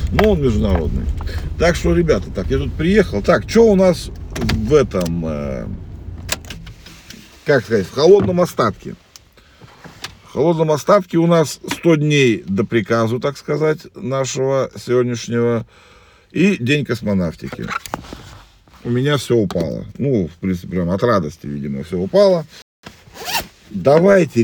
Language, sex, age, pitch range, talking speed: Russian, male, 50-69, 90-135 Hz, 130 wpm